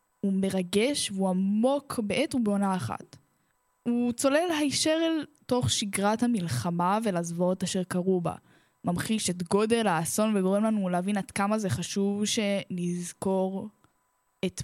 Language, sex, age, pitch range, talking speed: Hebrew, female, 10-29, 185-230 Hz, 125 wpm